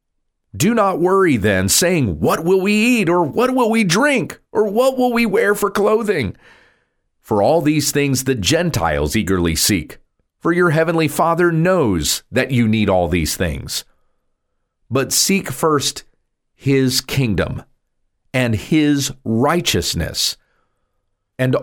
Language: English